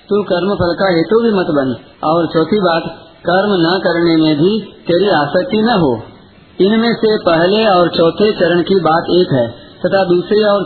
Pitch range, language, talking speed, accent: 155-185 Hz, Hindi, 185 wpm, native